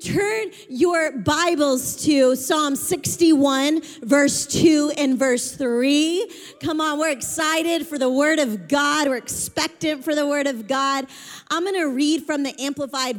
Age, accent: 30-49, American